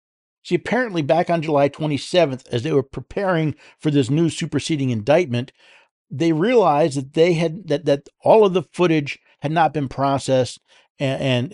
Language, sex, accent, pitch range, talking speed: English, male, American, 125-175 Hz, 160 wpm